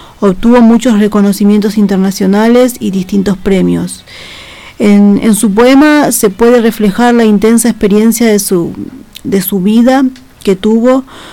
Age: 40-59